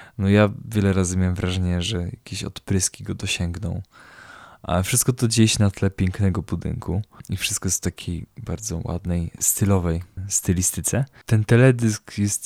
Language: Polish